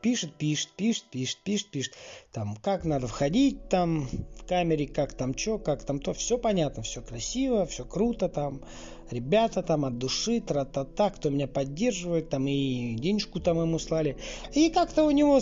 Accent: native